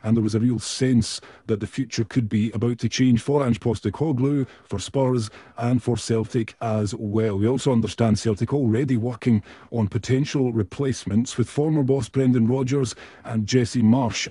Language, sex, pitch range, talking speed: English, male, 110-130 Hz, 170 wpm